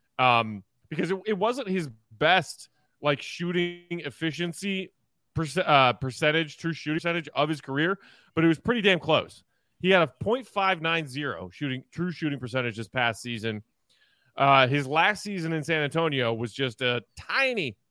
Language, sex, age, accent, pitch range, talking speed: English, male, 30-49, American, 135-185 Hz, 160 wpm